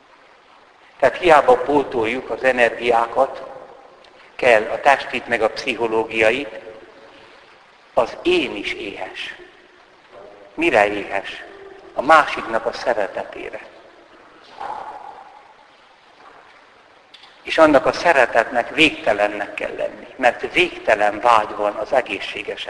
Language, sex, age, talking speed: Hungarian, male, 60-79, 90 wpm